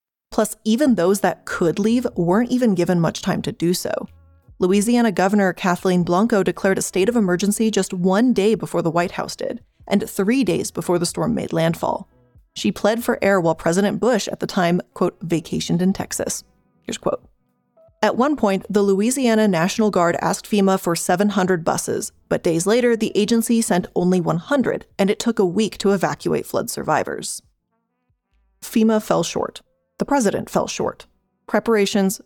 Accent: American